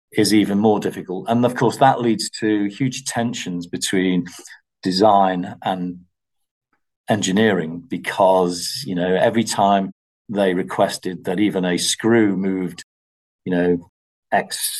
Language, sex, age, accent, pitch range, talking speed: English, male, 40-59, British, 90-105 Hz, 125 wpm